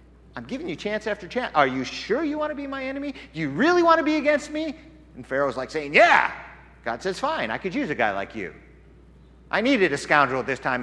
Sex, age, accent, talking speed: male, 50-69, American, 250 wpm